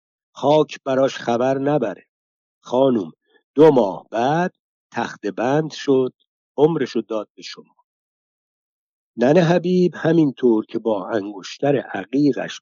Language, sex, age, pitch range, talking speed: Persian, male, 50-69, 120-170 Hz, 110 wpm